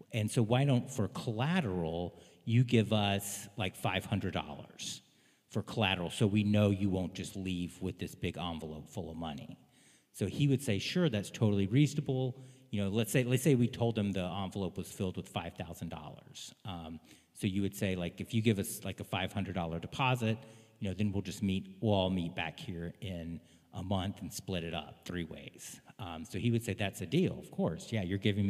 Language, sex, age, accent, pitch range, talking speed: English, male, 40-59, American, 90-110 Hz, 205 wpm